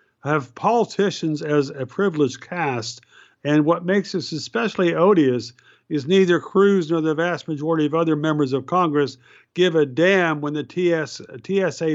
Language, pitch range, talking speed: English, 135-170 Hz, 150 wpm